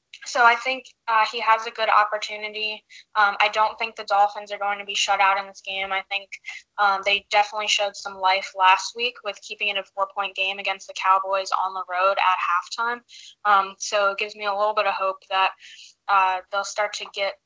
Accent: American